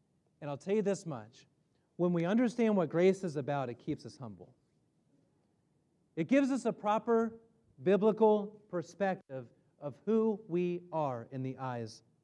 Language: English